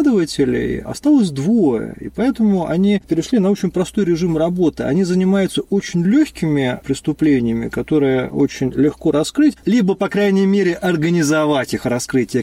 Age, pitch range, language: 30-49, 135-205 Hz, Russian